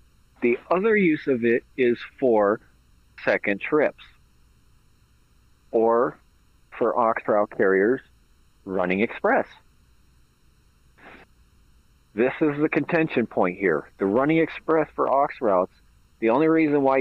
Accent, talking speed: American, 115 wpm